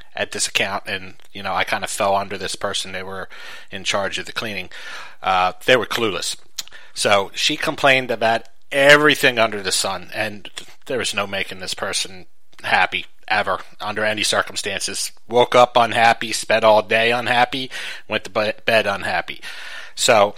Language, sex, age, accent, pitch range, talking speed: English, male, 30-49, American, 100-130 Hz, 165 wpm